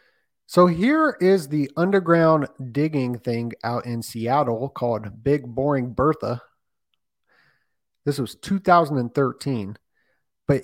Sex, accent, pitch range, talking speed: male, American, 120-155 Hz, 100 wpm